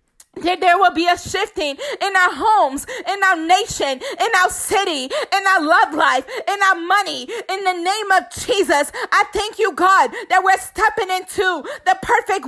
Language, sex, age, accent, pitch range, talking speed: English, female, 30-49, American, 355-400 Hz, 180 wpm